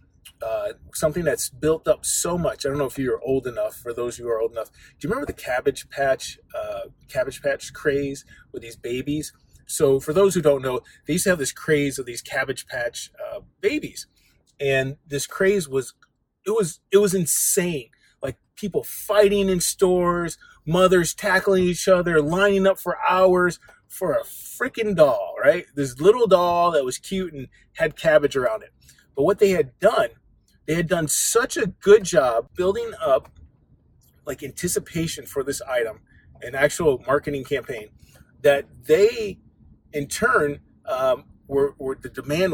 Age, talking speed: 30-49, 170 wpm